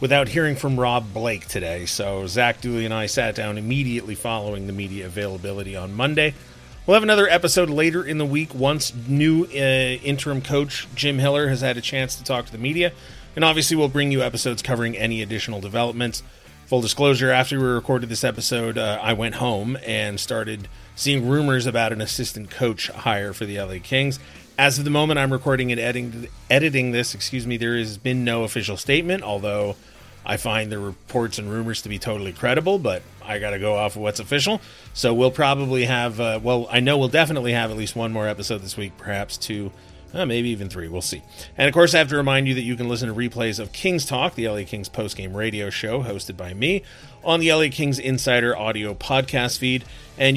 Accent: American